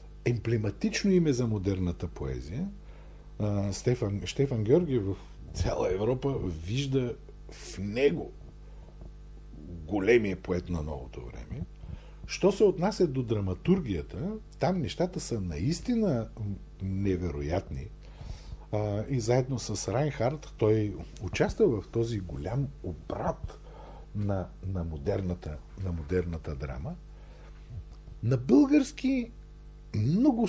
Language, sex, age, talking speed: Bulgarian, male, 50-69, 95 wpm